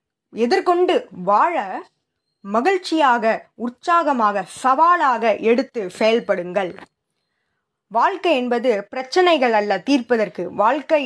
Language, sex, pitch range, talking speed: Tamil, female, 210-300 Hz, 70 wpm